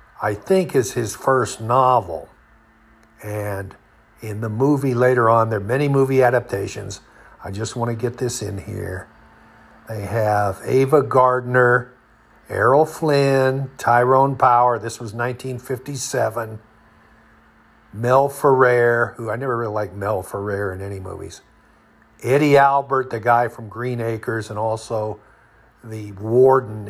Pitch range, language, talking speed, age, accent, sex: 100-120 Hz, English, 130 wpm, 60-79, American, male